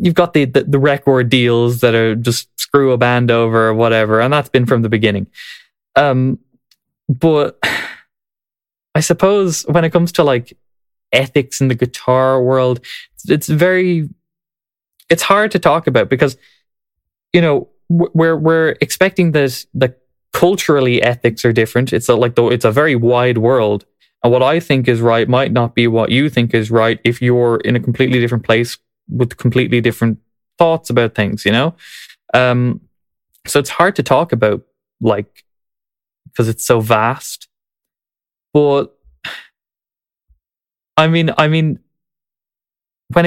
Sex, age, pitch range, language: male, 20-39, 120-160 Hz, English